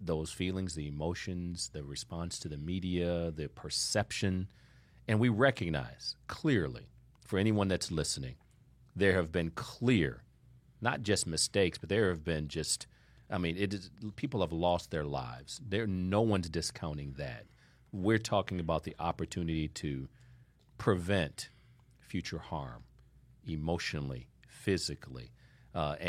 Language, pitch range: English, 80-100 Hz